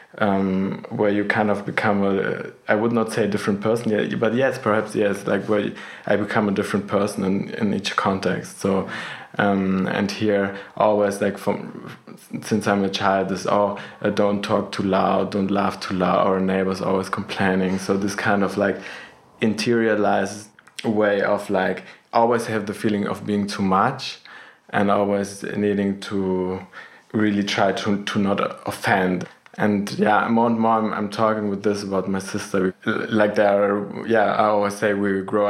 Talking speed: 175 wpm